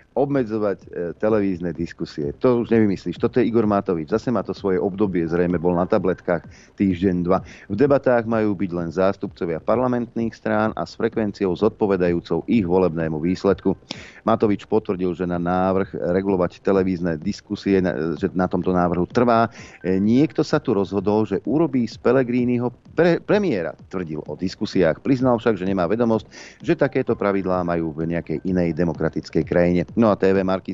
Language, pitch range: Slovak, 85-110 Hz